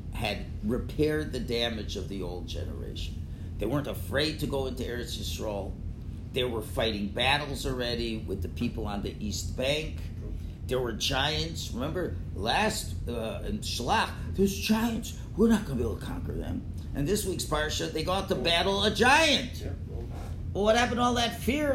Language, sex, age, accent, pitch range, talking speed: English, male, 50-69, American, 85-120 Hz, 180 wpm